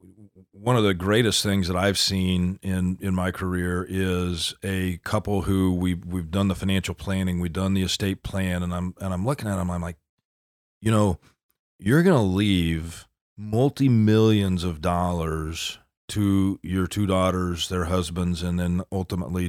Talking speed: 165 wpm